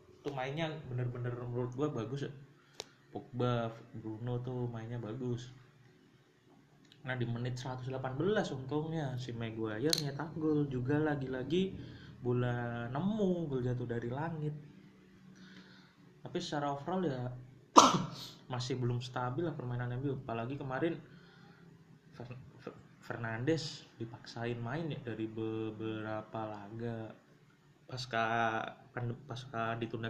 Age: 20-39